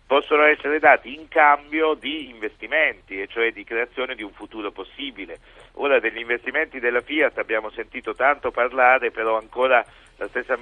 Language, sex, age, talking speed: Italian, male, 50-69, 160 wpm